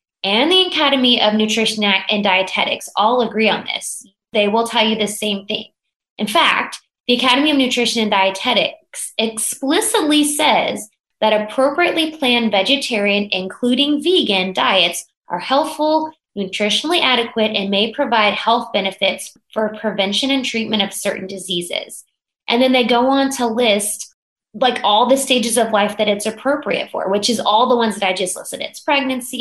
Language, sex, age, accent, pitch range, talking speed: English, female, 20-39, American, 205-260 Hz, 160 wpm